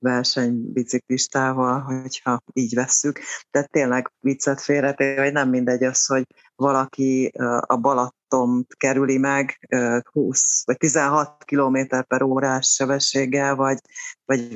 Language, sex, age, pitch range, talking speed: Hungarian, female, 30-49, 120-135 Hz, 110 wpm